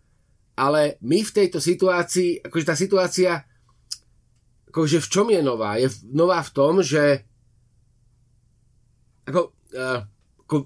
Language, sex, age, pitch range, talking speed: Slovak, male, 30-49, 120-175 Hz, 120 wpm